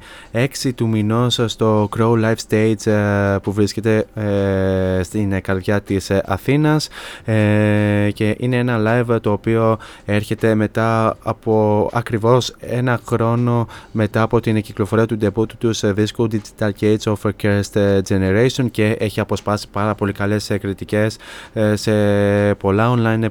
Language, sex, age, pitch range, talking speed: Greek, male, 20-39, 100-115 Hz, 125 wpm